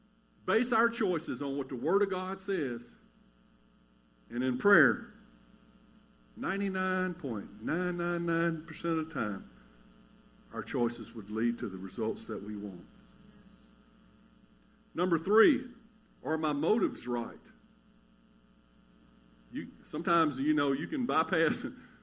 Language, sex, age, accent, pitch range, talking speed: English, male, 50-69, American, 155-220 Hz, 105 wpm